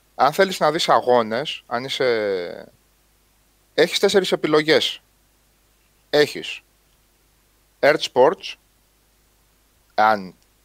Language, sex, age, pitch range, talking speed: Greek, male, 30-49, 130-195 Hz, 80 wpm